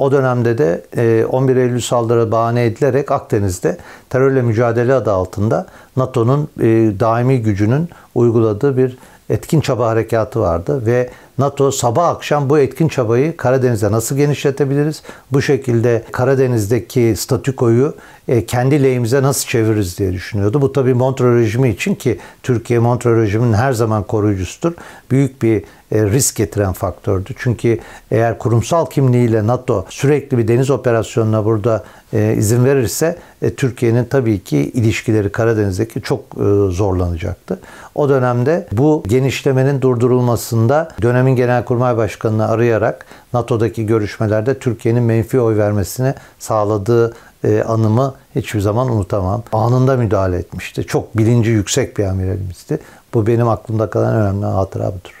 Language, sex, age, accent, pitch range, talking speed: Turkish, male, 60-79, native, 110-130 Hz, 120 wpm